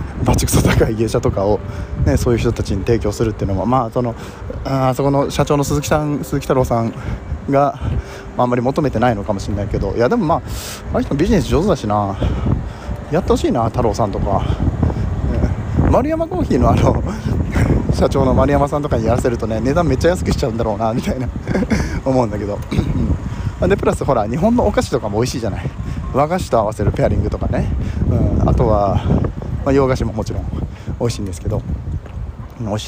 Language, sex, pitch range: Japanese, male, 100-125 Hz